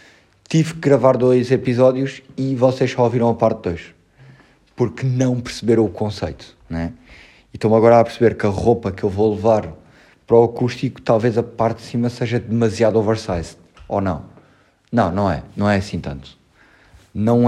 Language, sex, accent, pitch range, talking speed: Portuguese, male, Portuguese, 95-120 Hz, 175 wpm